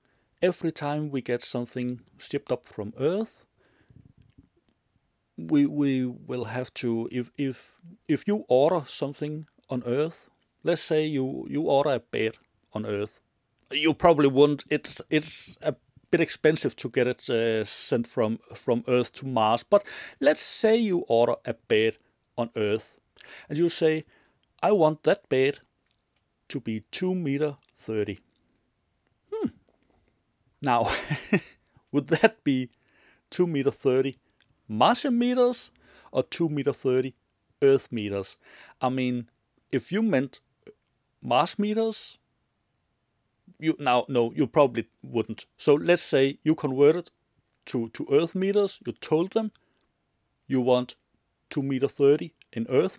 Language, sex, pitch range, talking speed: Danish, male, 120-160 Hz, 130 wpm